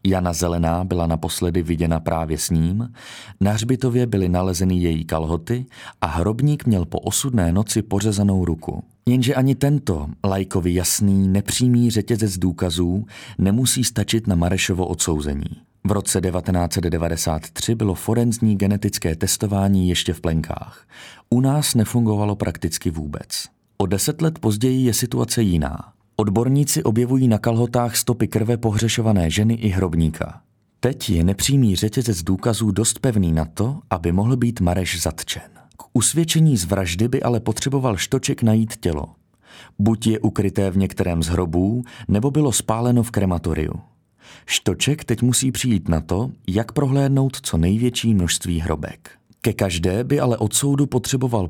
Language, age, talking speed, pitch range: Czech, 30-49, 140 wpm, 90-120 Hz